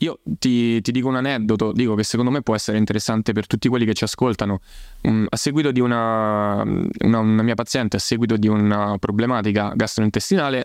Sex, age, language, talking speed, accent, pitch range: male, 20-39, Italian, 185 wpm, native, 110-125 Hz